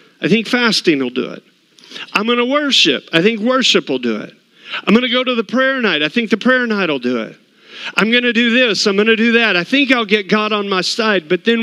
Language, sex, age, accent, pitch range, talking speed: English, male, 50-69, American, 130-200 Hz, 270 wpm